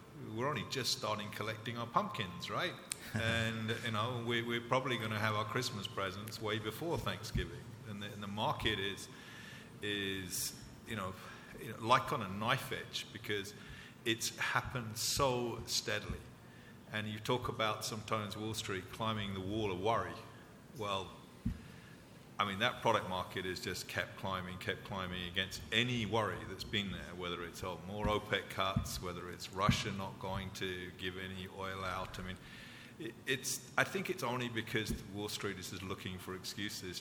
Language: English